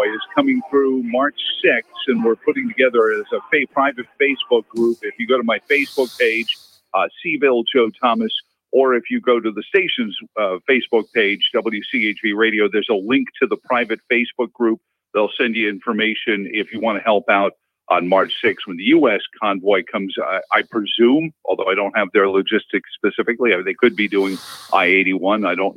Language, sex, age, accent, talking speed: English, male, 50-69, American, 185 wpm